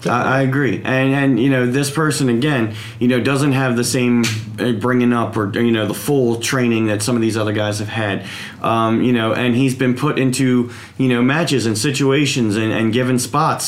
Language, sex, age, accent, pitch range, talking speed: English, male, 30-49, American, 120-150 Hz, 210 wpm